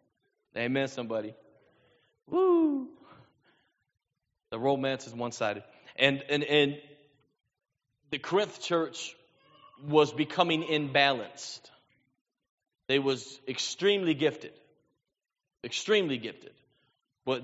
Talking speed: 85 wpm